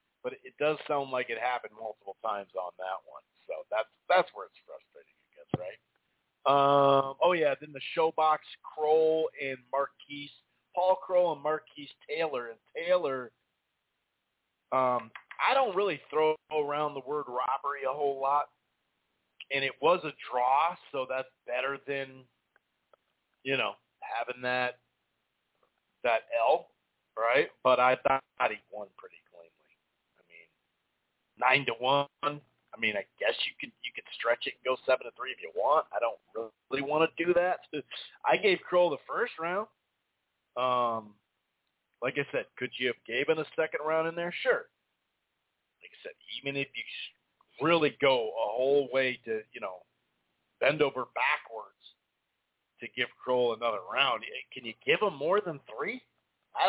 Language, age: English, 40-59